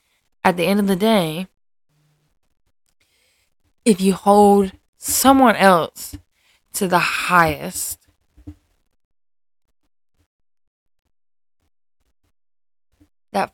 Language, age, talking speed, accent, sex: English, 20-39, 65 wpm, American, female